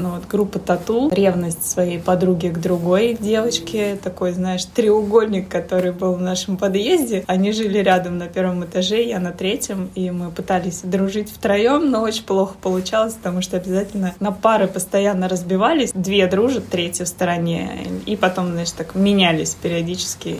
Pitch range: 180-205 Hz